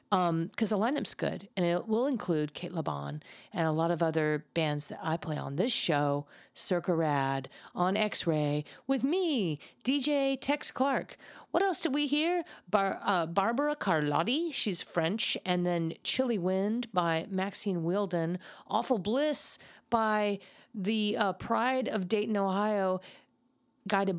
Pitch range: 175-230 Hz